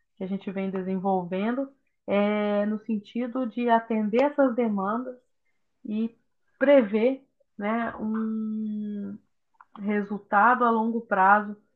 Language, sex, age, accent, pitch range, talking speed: Portuguese, female, 20-39, Brazilian, 205-255 Hz, 100 wpm